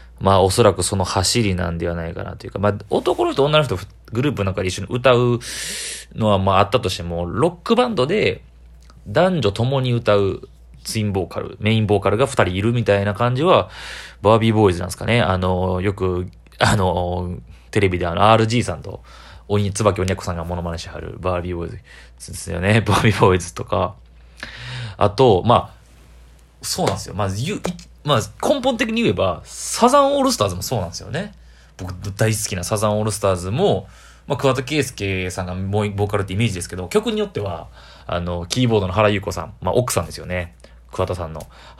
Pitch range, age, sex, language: 90-120 Hz, 30-49, male, Japanese